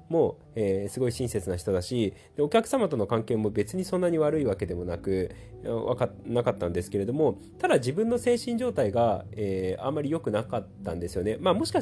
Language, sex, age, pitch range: Japanese, male, 30-49, 100-150 Hz